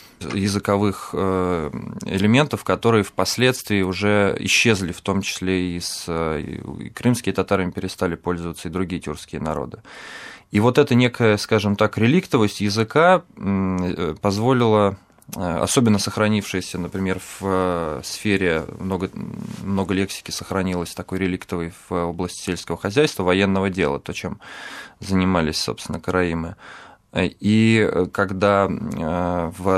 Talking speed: 110 wpm